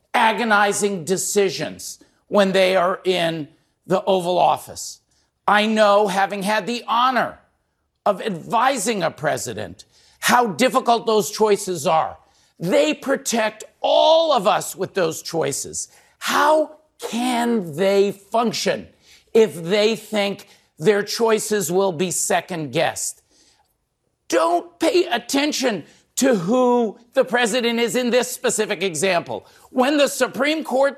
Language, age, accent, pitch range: English, 50-69, American, 200-265 Hz